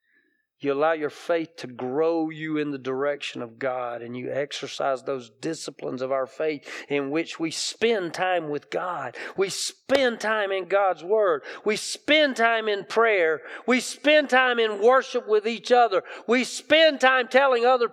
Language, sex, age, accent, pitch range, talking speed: English, male, 40-59, American, 205-300 Hz, 170 wpm